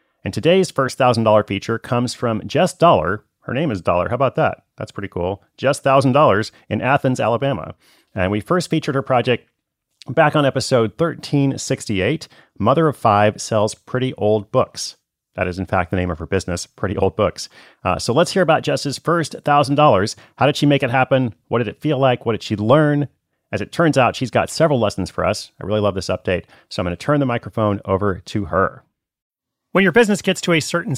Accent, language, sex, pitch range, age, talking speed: American, English, male, 115-145 Hz, 30-49, 215 wpm